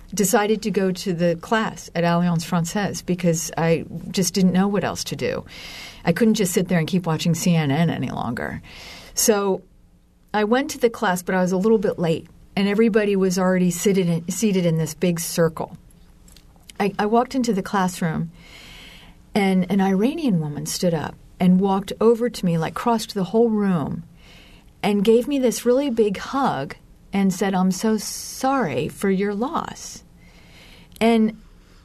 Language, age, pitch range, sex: English, 50-69, 175-225 Hz, female